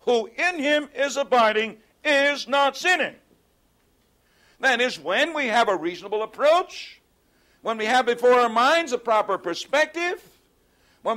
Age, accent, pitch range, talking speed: 60-79, American, 220-310 Hz, 140 wpm